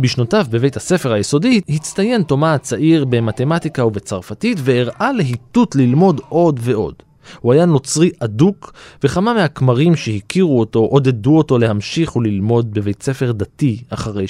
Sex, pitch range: male, 115-160 Hz